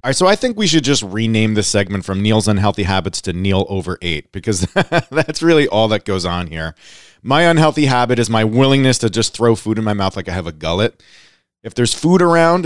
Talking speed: 230 wpm